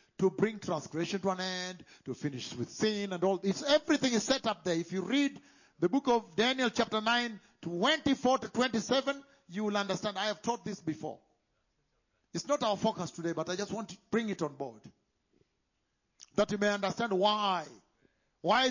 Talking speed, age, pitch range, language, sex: 185 wpm, 60-79, 165-235 Hz, English, male